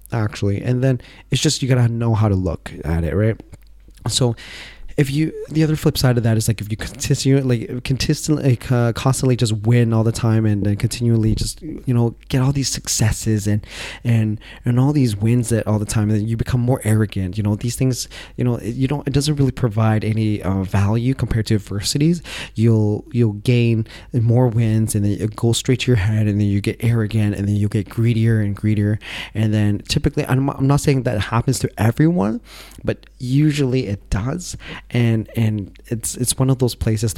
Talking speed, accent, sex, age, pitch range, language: 205 wpm, American, male, 20-39, 105-125 Hz, English